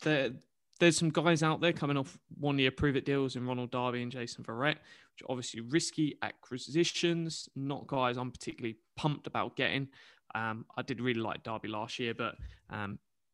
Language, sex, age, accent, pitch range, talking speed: English, male, 20-39, British, 120-145 Hz, 185 wpm